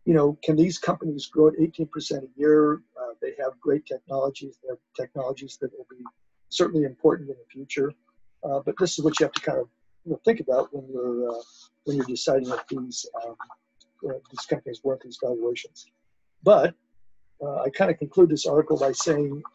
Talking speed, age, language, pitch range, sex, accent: 200 wpm, 50-69, English, 120-165 Hz, male, American